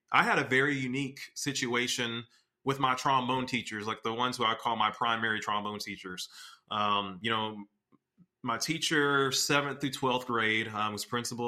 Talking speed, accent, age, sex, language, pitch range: 165 wpm, American, 30-49, male, English, 110-130 Hz